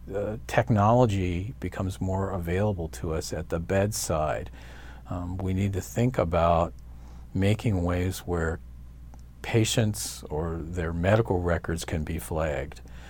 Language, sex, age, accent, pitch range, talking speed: English, male, 50-69, American, 80-95 Hz, 120 wpm